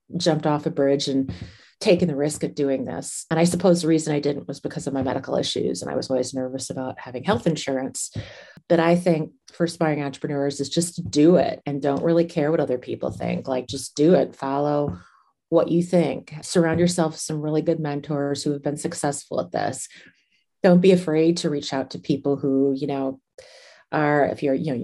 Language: English